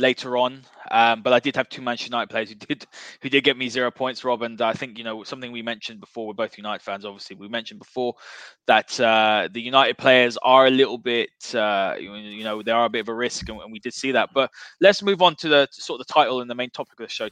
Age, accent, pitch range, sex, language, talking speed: 20-39, British, 115-140 Hz, male, English, 280 wpm